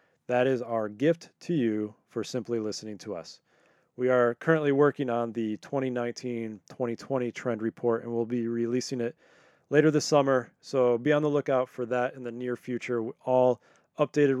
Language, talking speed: English, 170 wpm